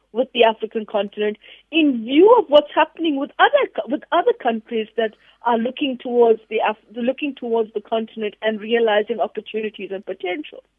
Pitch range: 215-270 Hz